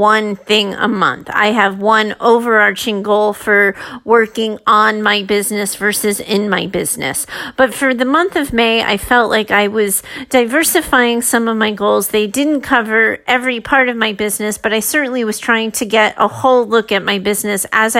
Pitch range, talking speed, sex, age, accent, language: 210-260 Hz, 185 wpm, female, 40-59, American, English